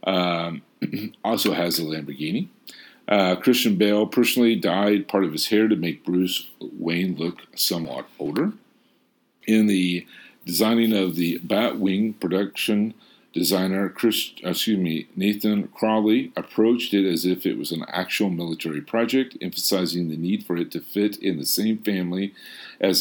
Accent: American